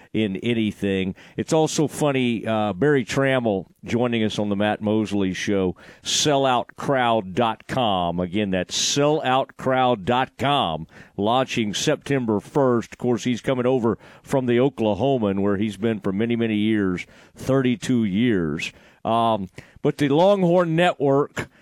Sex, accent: male, American